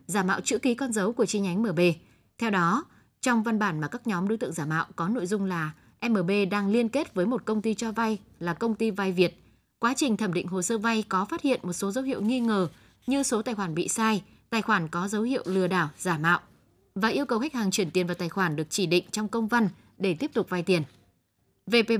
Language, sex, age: Vietnamese, female, 20-39